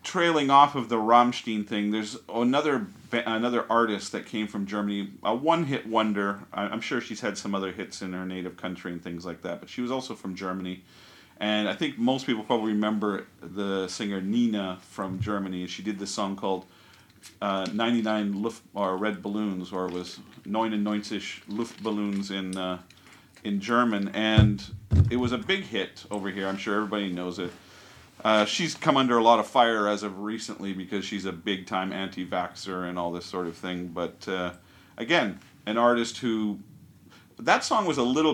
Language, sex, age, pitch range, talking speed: English, male, 40-59, 90-110 Hz, 185 wpm